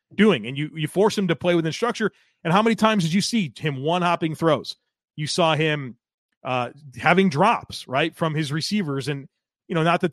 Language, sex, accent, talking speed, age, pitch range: English, male, American, 215 wpm, 30-49, 145-195 Hz